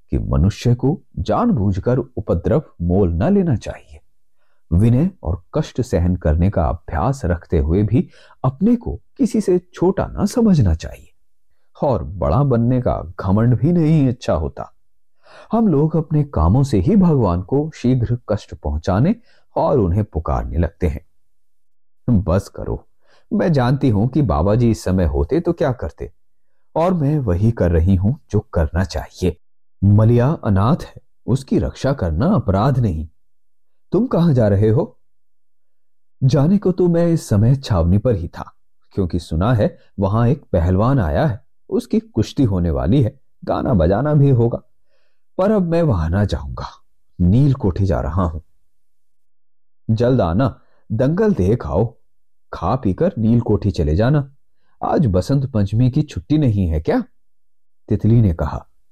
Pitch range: 90-140 Hz